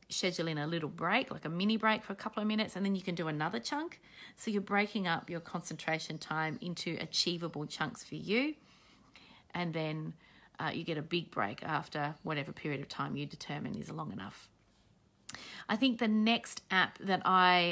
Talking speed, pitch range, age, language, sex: 195 wpm, 160-205 Hz, 30-49, English, female